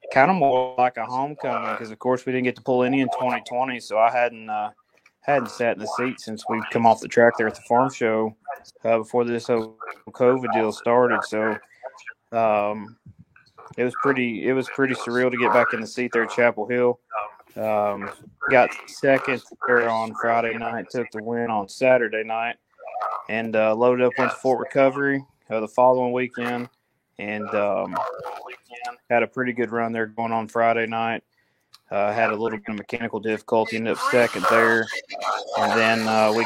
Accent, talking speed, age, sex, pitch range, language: American, 190 wpm, 20-39, male, 110-125 Hz, English